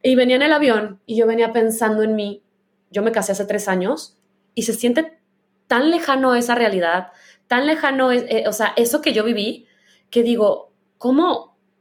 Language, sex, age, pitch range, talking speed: Spanish, female, 20-39, 205-270 Hz, 185 wpm